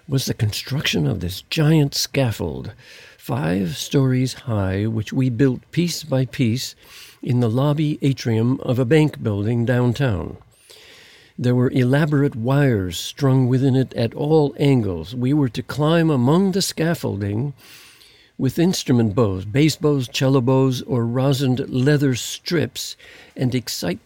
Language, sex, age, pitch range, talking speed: English, male, 60-79, 120-150 Hz, 135 wpm